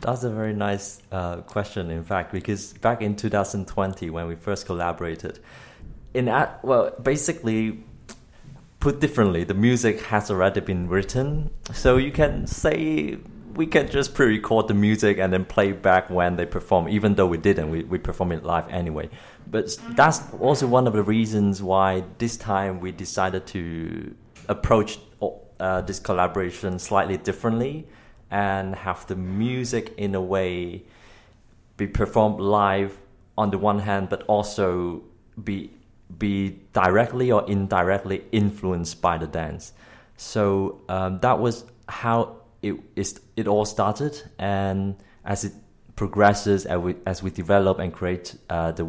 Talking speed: 150 wpm